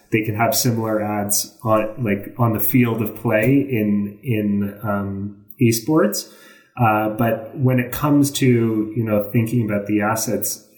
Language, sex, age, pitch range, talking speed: English, male, 30-49, 105-125 Hz, 155 wpm